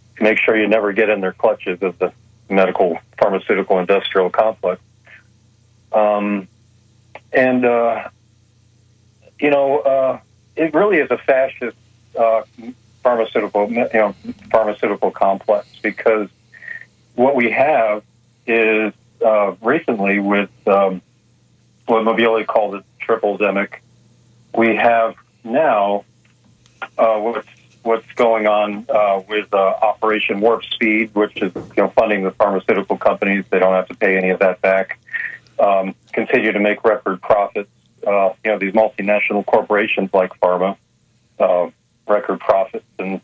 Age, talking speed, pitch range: 40-59, 130 wpm, 105-120 Hz